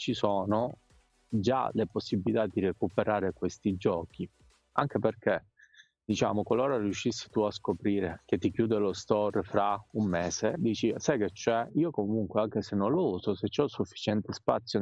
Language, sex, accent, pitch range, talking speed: Italian, male, native, 100-115 Hz, 160 wpm